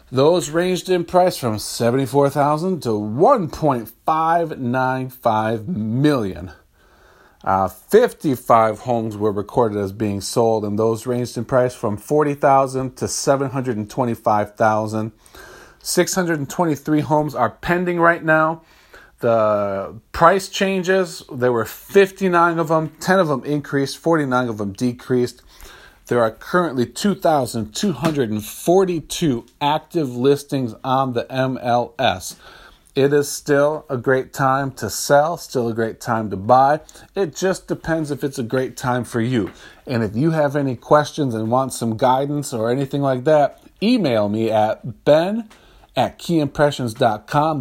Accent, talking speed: American, 145 wpm